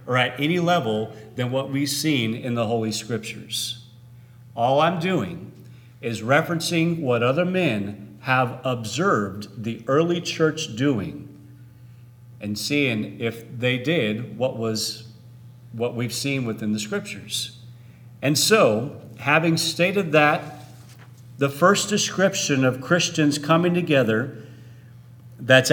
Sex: male